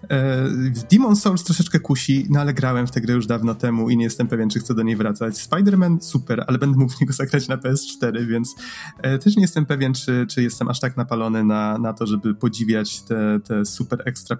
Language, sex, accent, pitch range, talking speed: Polish, male, native, 110-135 Hz, 220 wpm